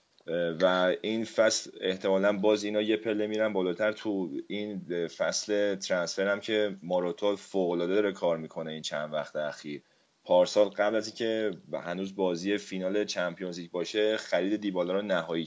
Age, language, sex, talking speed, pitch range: 30-49, Persian, male, 145 wpm, 90-105 Hz